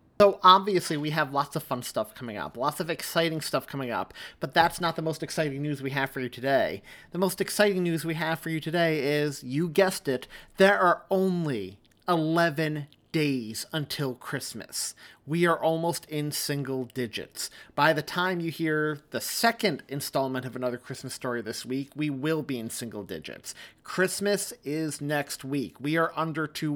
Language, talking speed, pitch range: English, 185 wpm, 120-160 Hz